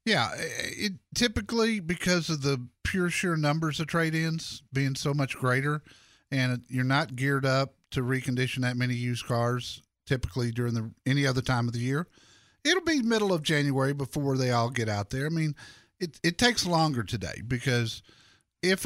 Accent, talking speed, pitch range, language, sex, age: American, 170 wpm, 120-160 Hz, English, male, 50-69